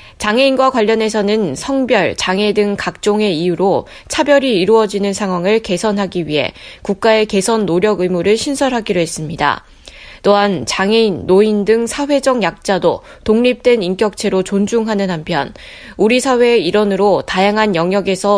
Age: 20-39